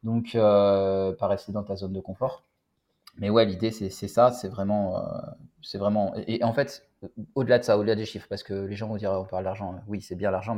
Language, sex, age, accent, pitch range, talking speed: French, male, 20-39, French, 100-120 Hz, 235 wpm